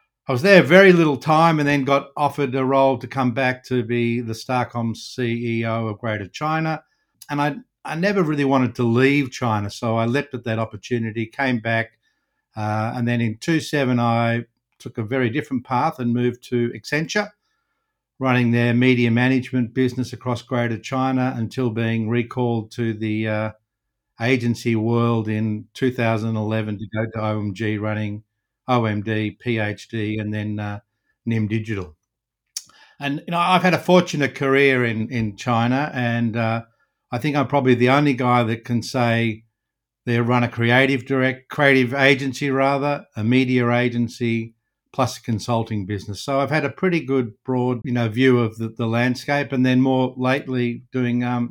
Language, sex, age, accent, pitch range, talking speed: English, male, 60-79, Australian, 115-135 Hz, 165 wpm